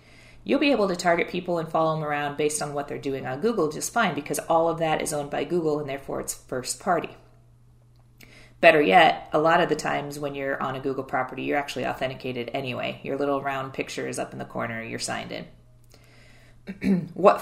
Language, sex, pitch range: English, female, 125-155 Hz